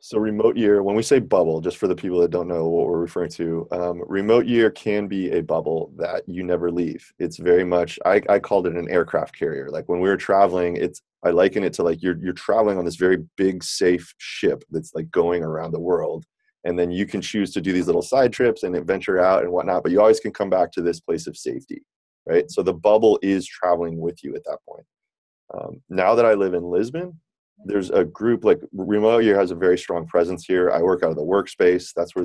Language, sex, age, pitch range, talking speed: English, male, 20-39, 85-110 Hz, 240 wpm